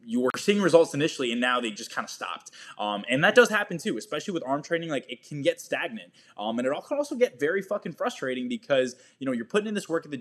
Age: 20-39